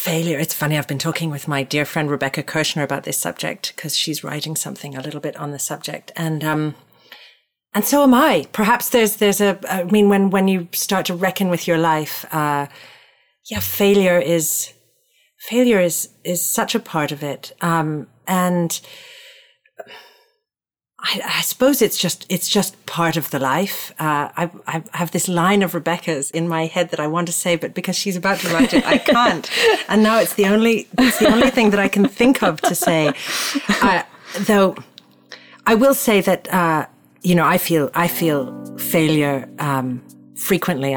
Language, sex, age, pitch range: English, female, 40-59, 150-205 Hz